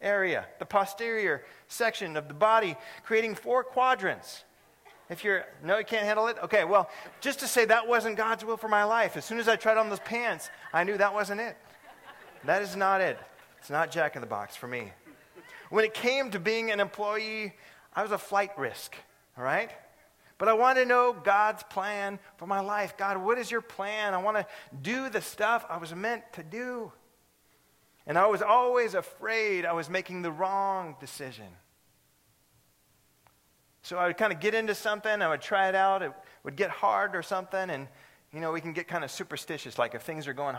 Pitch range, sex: 155-220 Hz, male